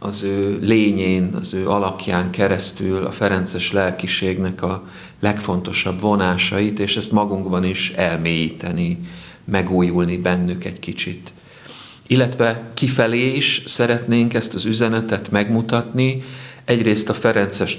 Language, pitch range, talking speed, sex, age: Hungarian, 95-110 Hz, 110 wpm, male, 50-69